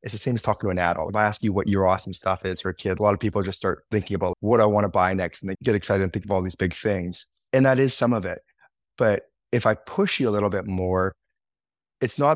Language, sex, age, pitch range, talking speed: English, male, 20-39, 95-115 Hz, 300 wpm